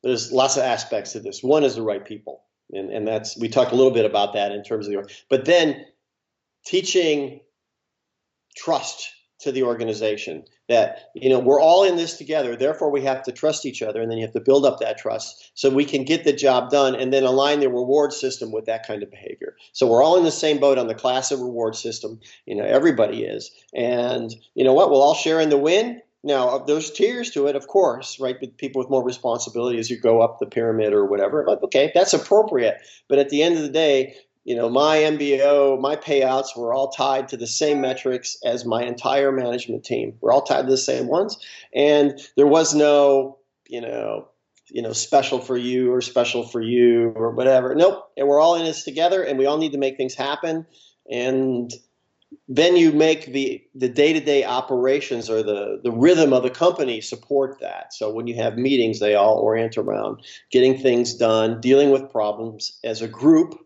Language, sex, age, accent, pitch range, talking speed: English, male, 50-69, American, 120-150 Hz, 210 wpm